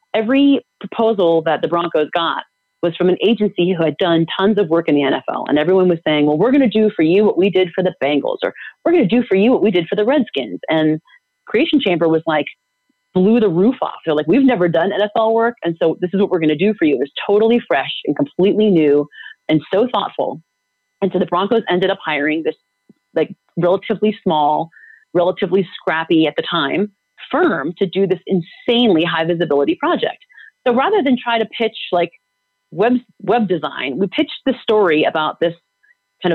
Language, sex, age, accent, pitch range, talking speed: English, female, 30-49, American, 155-215 Hz, 210 wpm